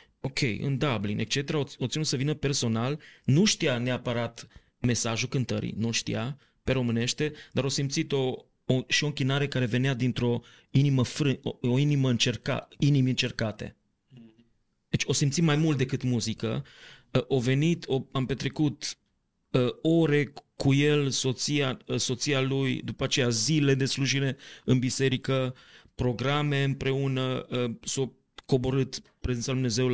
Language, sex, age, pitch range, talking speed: Romanian, male, 30-49, 120-140 Hz, 135 wpm